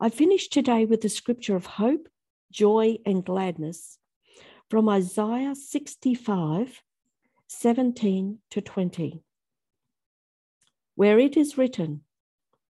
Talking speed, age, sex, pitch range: 100 wpm, 50-69, female, 185-250 Hz